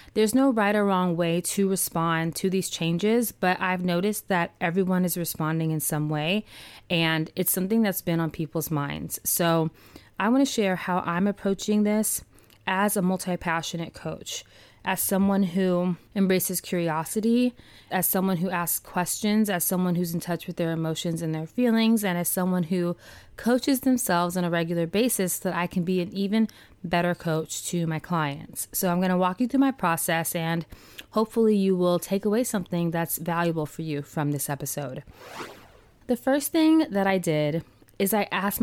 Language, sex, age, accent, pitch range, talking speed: English, female, 20-39, American, 165-200 Hz, 180 wpm